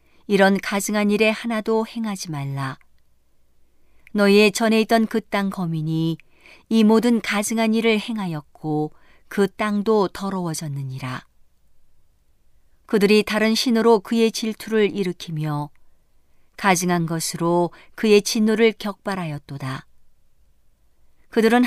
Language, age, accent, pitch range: Korean, 50-69, native, 145-220 Hz